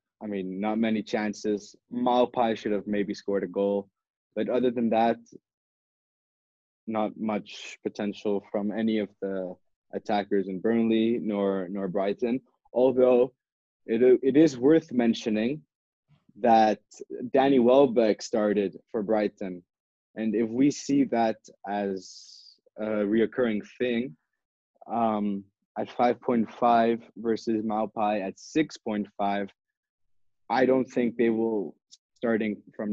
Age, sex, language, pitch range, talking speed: 20-39, male, English, 100-115 Hz, 120 wpm